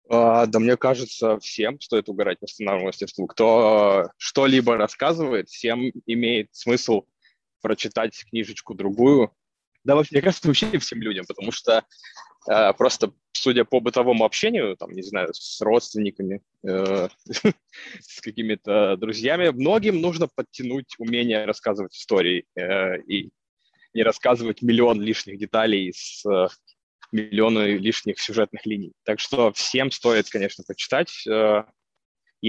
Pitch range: 110-135 Hz